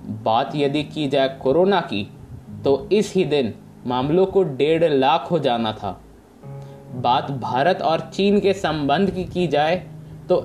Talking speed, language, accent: 155 wpm, Hindi, native